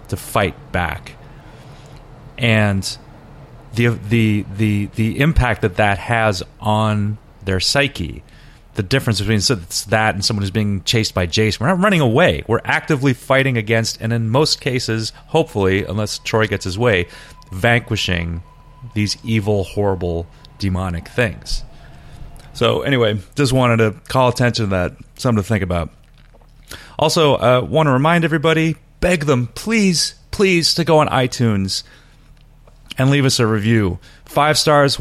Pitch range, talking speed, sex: 105-140 Hz, 145 wpm, male